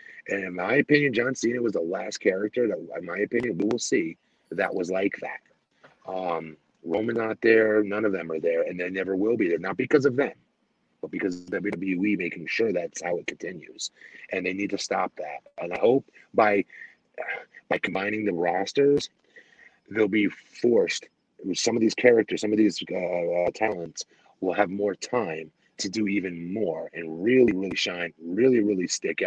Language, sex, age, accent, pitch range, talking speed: English, male, 30-49, American, 95-145 Hz, 185 wpm